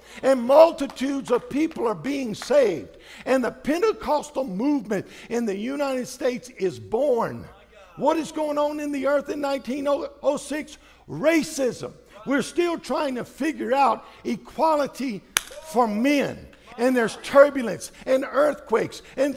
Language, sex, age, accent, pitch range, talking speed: English, male, 50-69, American, 245-305 Hz, 130 wpm